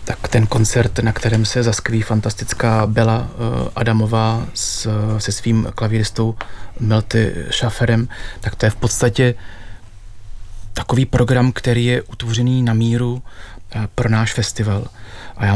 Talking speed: 125 wpm